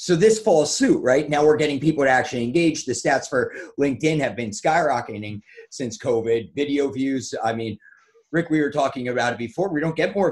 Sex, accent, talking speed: male, American, 210 wpm